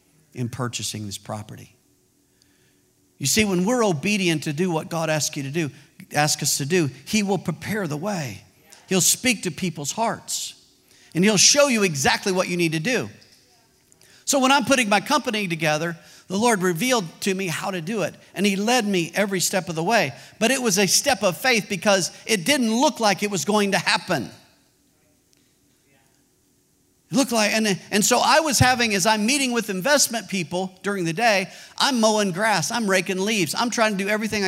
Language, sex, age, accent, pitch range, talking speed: English, male, 50-69, American, 170-220 Hz, 195 wpm